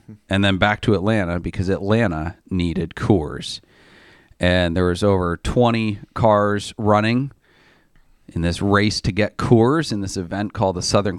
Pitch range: 90-110 Hz